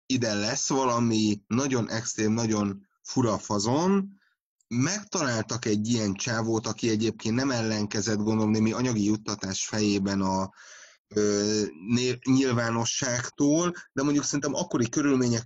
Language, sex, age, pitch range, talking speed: Hungarian, male, 30-49, 105-130 Hz, 115 wpm